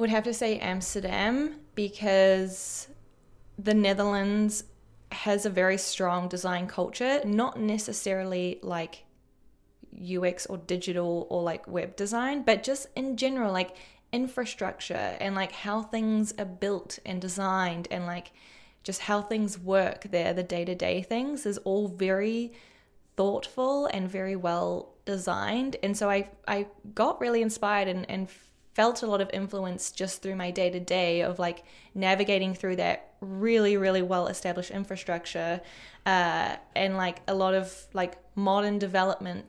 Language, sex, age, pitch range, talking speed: English, female, 10-29, 185-210 Hz, 140 wpm